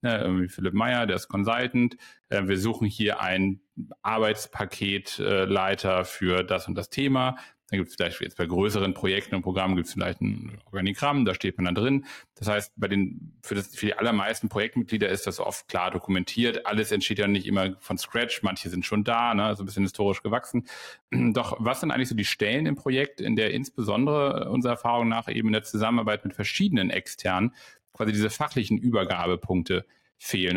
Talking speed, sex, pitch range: 190 wpm, male, 100-120 Hz